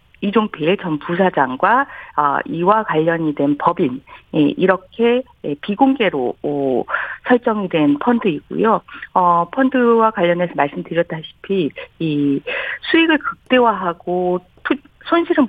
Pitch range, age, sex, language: 160-245 Hz, 50-69, female, Korean